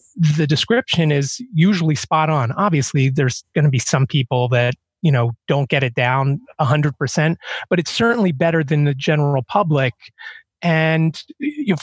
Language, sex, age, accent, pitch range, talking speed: English, male, 30-49, American, 140-180 Hz, 175 wpm